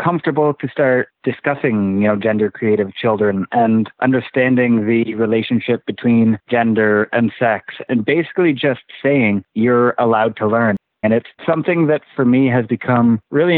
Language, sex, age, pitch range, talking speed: English, male, 30-49, 115-130 Hz, 150 wpm